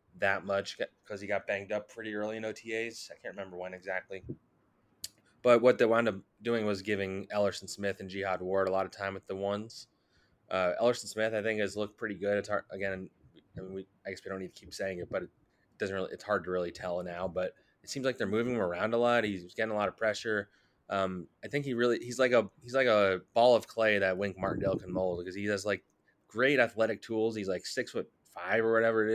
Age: 20-39